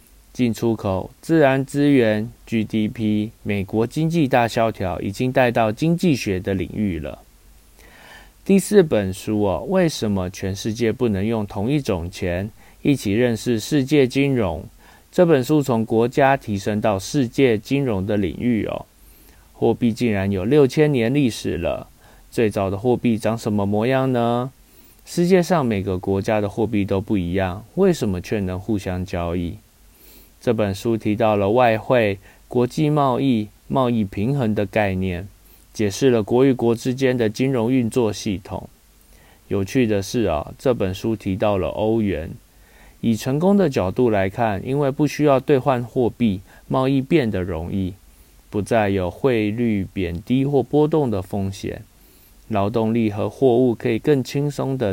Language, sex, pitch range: Chinese, male, 100-130 Hz